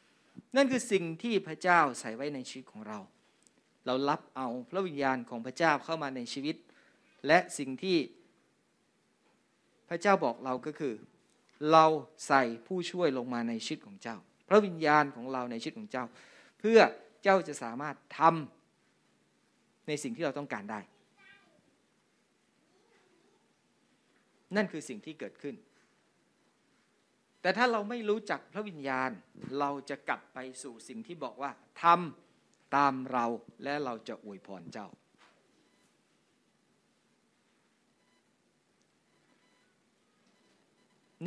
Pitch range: 130-175 Hz